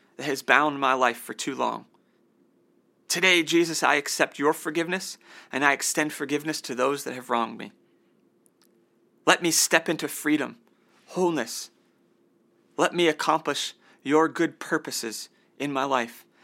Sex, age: male, 30-49